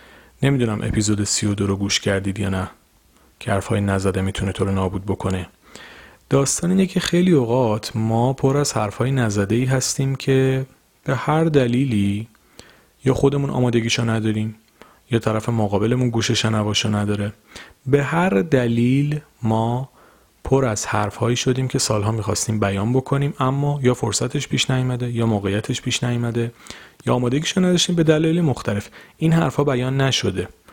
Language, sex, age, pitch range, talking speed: Persian, male, 30-49, 105-135 Hz, 145 wpm